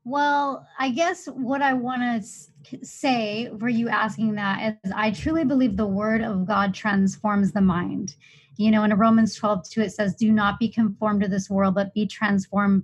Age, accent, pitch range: 30-49, American, 200-235 Hz